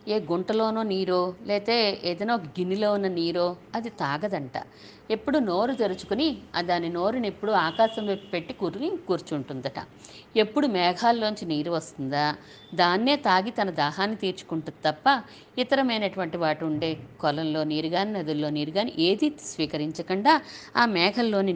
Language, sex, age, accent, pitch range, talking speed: Telugu, female, 50-69, native, 170-230 Hz, 120 wpm